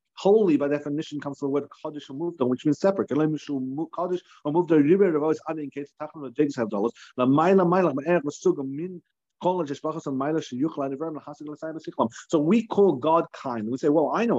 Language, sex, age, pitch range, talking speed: English, male, 40-59, 130-175 Hz, 90 wpm